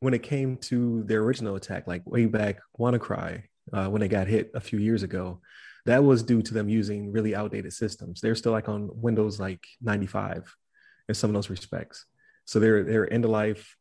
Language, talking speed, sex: English, 205 wpm, male